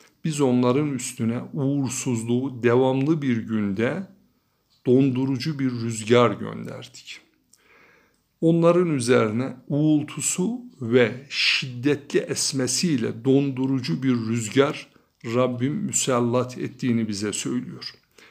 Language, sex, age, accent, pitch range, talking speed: Turkish, male, 60-79, native, 115-135 Hz, 80 wpm